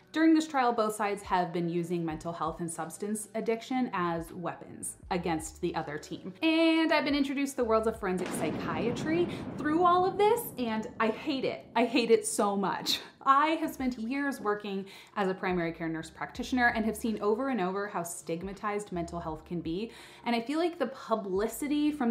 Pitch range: 175-265 Hz